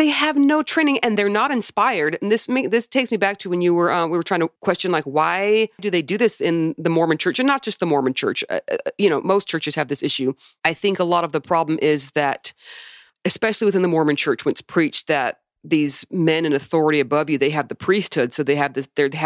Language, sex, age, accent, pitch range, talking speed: English, female, 40-59, American, 150-210 Hz, 250 wpm